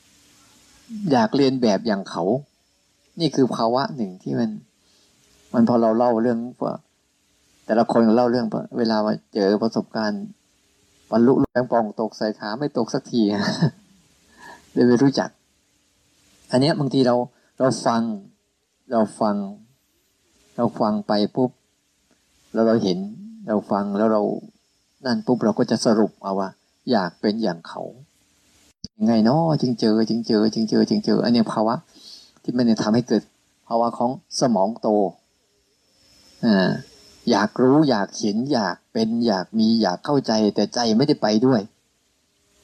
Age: 20-39